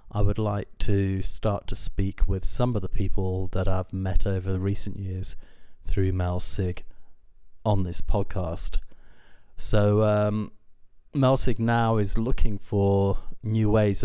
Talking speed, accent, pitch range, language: 140 wpm, British, 95-105 Hz, English